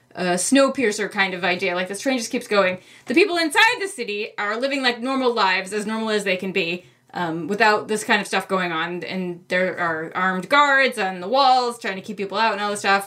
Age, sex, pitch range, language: 20-39, female, 195-255 Hz, English